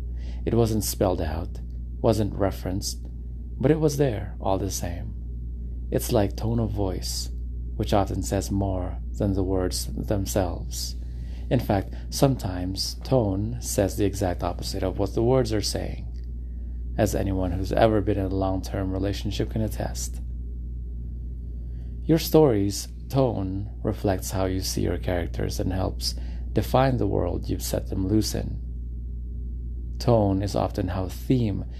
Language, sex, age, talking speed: English, male, 30-49, 140 wpm